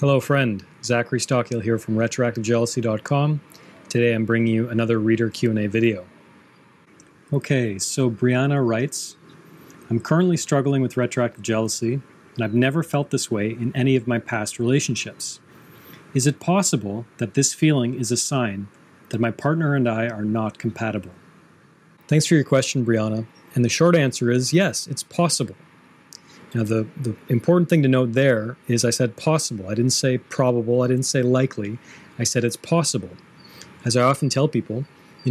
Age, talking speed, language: 40-59, 165 wpm, English